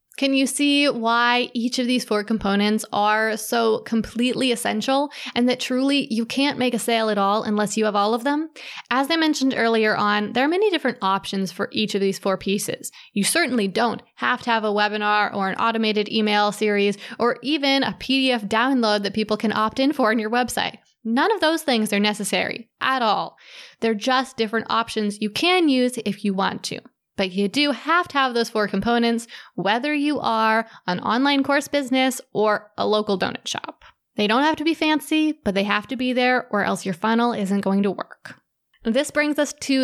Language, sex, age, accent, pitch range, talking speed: English, female, 20-39, American, 205-255 Hz, 205 wpm